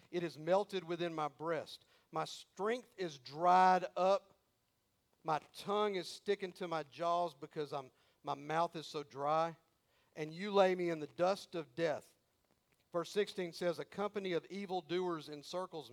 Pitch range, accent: 170-225 Hz, American